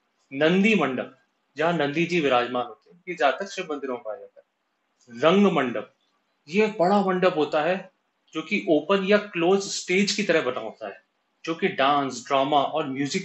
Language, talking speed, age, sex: Hindi, 170 wpm, 30-49, male